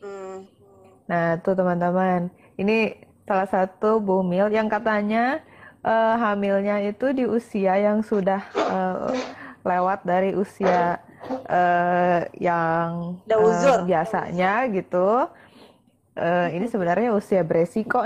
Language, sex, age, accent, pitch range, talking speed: Indonesian, female, 20-39, native, 180-225 Hz, 100 wpm